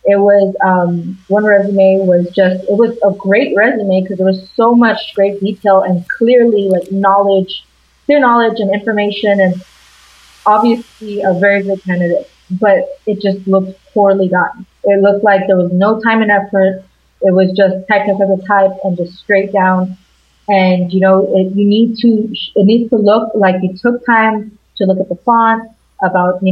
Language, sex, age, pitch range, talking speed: English, female, 20-39, 190-220 Hz, 190 wpm